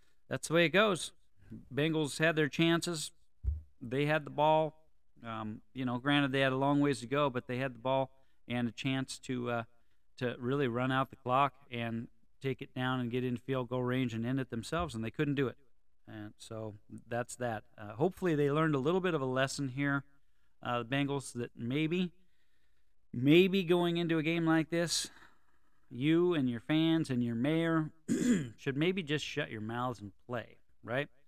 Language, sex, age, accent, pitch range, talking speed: English, male, 40-59, American, 120-150 Hz, 195 wpm